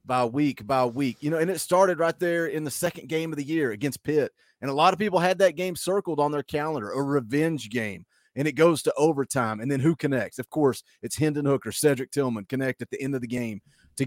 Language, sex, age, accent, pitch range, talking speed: English, male, 30-49, American, 140-170 Hz, 250 wpm